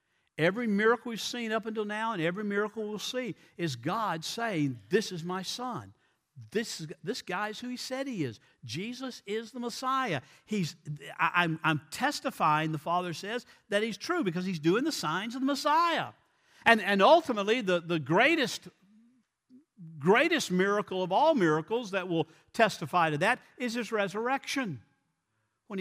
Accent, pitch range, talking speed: American, 155-245 Hz, 165 wpm